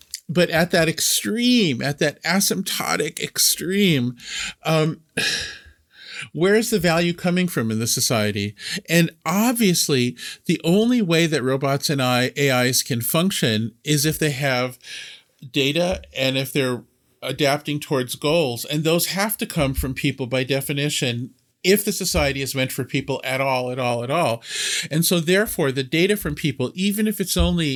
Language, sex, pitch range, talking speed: English, male, 125-165 Hz, 160 wpm